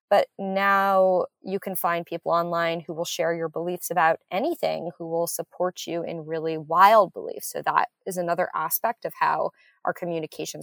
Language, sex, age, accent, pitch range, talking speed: English, female, 20-39, American, 170-220 Hz, 175 wpm